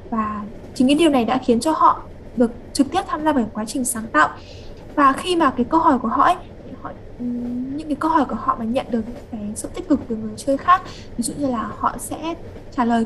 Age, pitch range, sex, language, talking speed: 10-29, 235-290 Hz, female, Vietnamese, 255 wpm